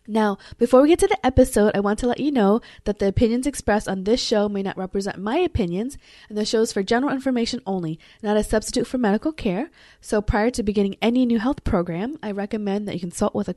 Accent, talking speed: American, 240 wpm